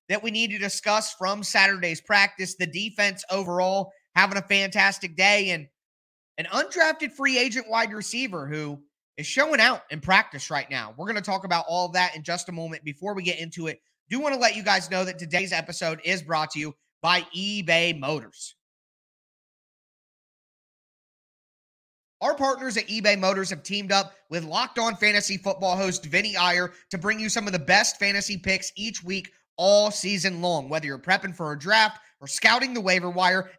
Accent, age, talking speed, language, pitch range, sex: American, 30-49, 185 wpm, English, 175-215 Hz, male